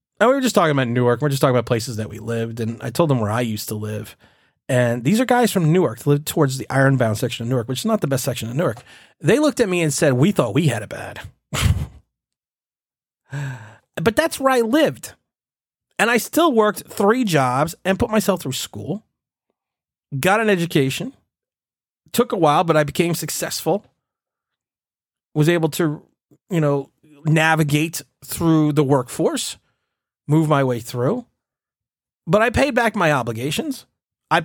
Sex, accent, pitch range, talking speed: male, American, 130-195 Hz, 185 wpm